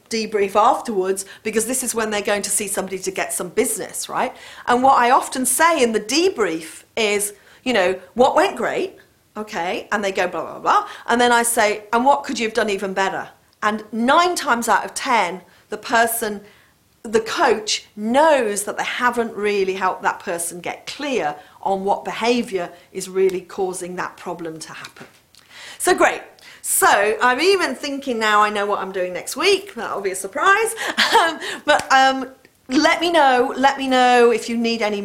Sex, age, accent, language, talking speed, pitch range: female, 40-59, British, English, 190 wpm, 200-260 Hz